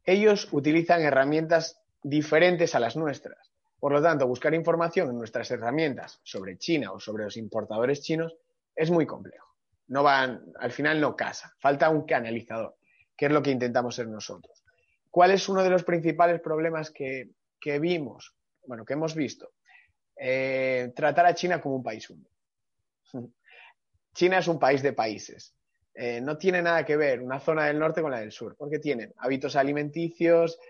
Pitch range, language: 135-170 Hz, Spanish